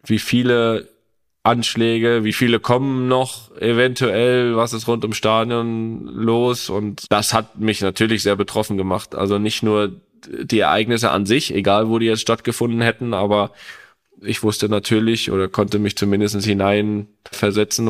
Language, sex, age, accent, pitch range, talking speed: German, male, 10-29, German, 105-115 Hz, 150 wpm